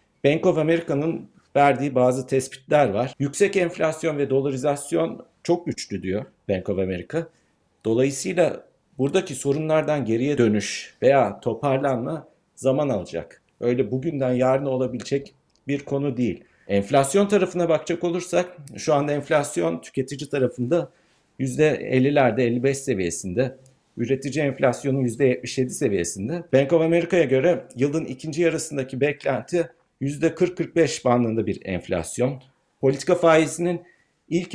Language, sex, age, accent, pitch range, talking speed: Turkish, male, 50-69, native, 130-165 Hz, 110 wpm